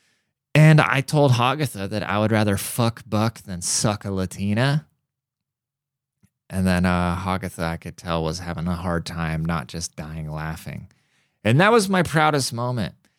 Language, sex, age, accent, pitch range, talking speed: English, male, 20-39, American, 85-120 Hz, 165 wpm